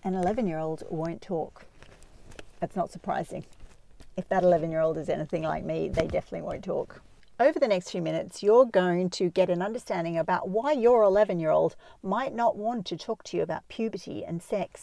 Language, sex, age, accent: English, female, 50-69, Australian